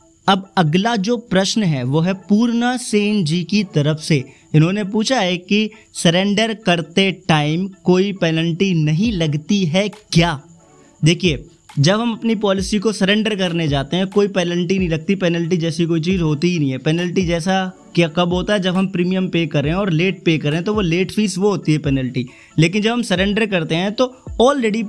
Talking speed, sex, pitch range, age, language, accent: 190 wpm, male, 160-195 Hz, 20-39, Hindi, native